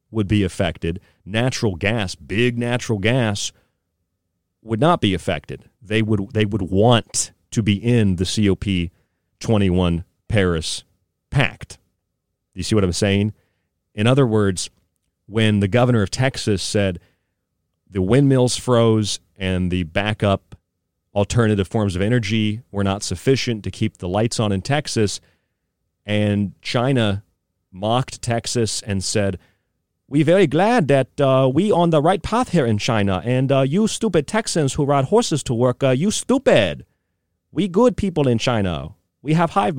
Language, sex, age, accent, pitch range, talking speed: English, male, 40-59, American, 90-125 Hz, 150 wpm